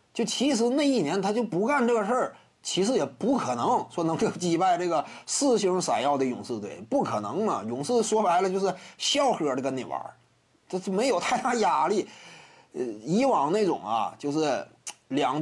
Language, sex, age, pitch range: Chinese, male, 30-49, 155-225 Hz